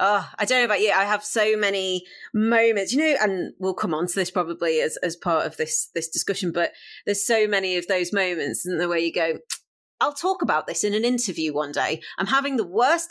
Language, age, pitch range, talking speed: English, 30-49, 180-230 Hz, 240 wpm